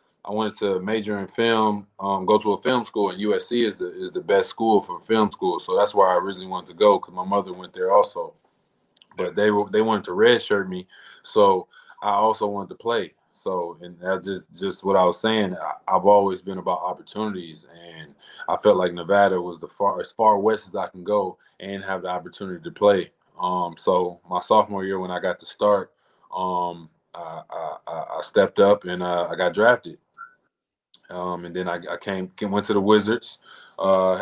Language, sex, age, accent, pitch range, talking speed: English, male, 20-39, American, 95-115 Hz, 210 wpm